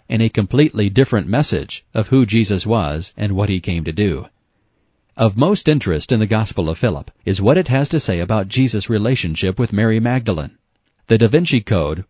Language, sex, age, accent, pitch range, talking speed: English, male, 40-59, American, 100-130 Hz, 195 wpm